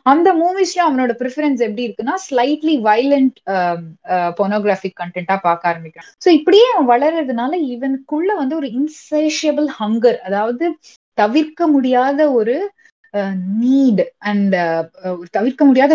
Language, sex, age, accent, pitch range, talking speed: Tamil, female, 20-39, native, 200-275 Hz, 40 wpm